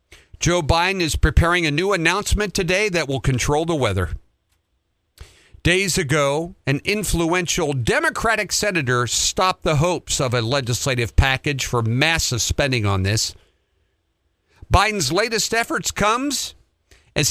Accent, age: American, 50-69